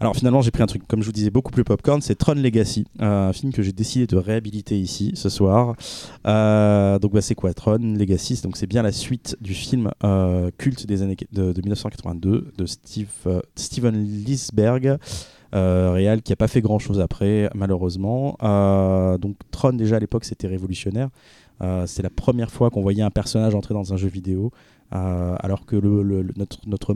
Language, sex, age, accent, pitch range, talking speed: French, male, 20-39, French, 95-115 Hz, 210 wpm